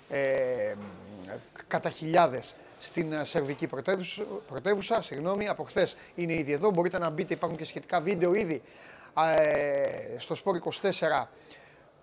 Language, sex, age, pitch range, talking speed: Greek, male, 30-49, 145-180 Hz, 125 wpm